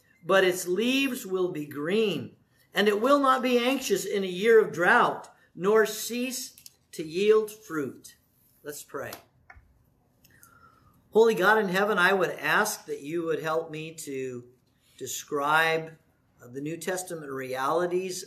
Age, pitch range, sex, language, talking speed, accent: 50-69, 140-205 Hz, male, English, 140 wpm, American